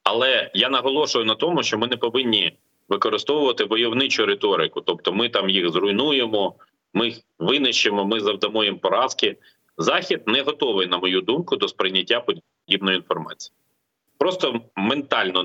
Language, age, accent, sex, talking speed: Ukrainian, 30-49, native, male, 140 wpm